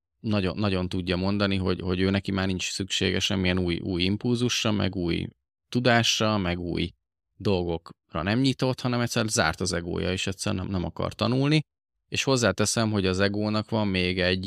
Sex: male